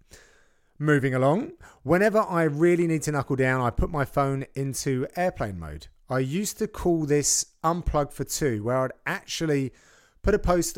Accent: British